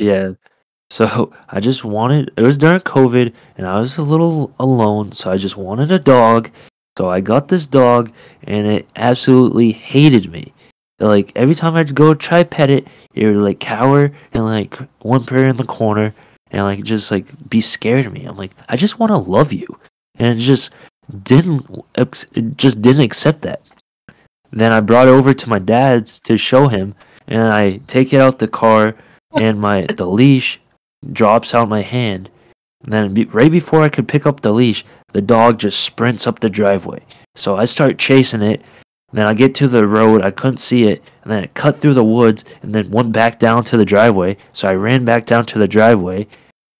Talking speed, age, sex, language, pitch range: 200 wpm, 20-39, male, English, 105-135 Hz